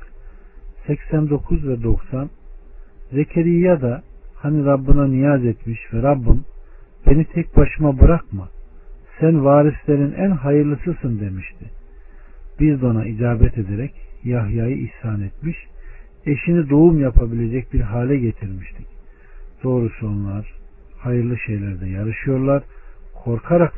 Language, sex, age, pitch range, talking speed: Turkish, male, 50-69, 100-130 Hz, 100 wpm